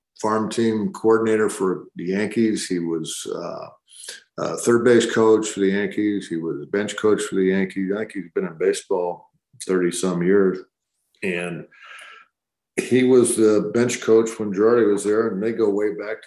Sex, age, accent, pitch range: male, 50-69, American, 95-115 Hz